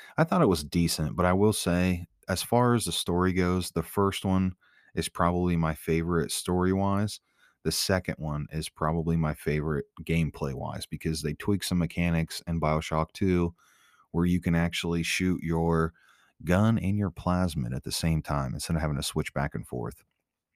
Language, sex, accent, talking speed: English, male, American, 180 wpm